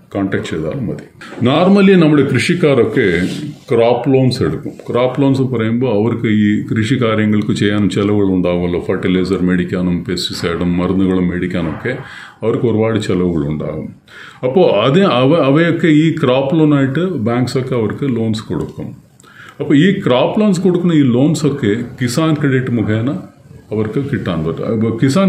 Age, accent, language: 30-49, native, Malayalam